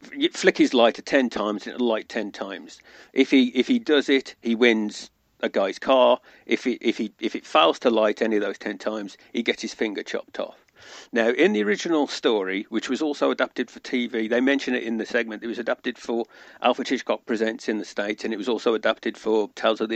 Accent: British